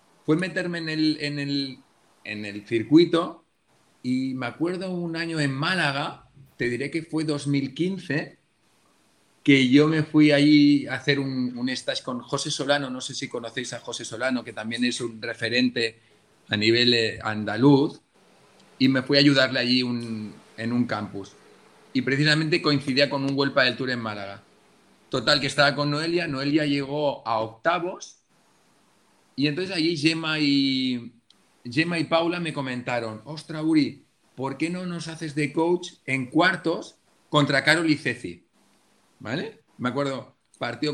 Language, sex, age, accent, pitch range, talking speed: Spanish, male, 30-49, Spanish, 125-155 Hz, 155 wpm